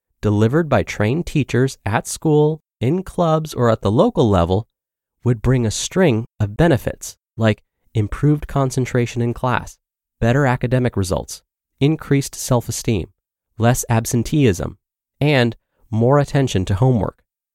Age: 30-49